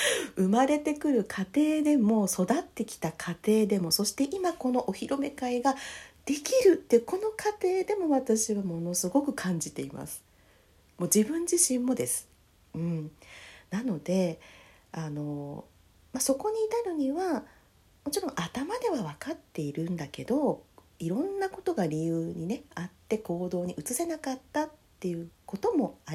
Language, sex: Japanese, female